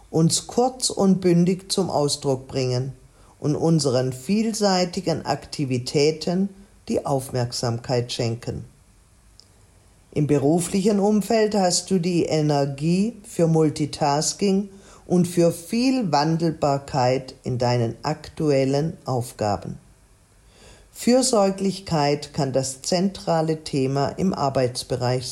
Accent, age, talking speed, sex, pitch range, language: German, 50-69, 90 wpm, female, 130-180 Hz, German